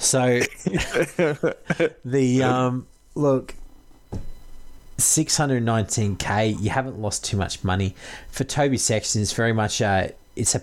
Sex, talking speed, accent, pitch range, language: male, 115 wpm, Australian, 95-120 Hz, English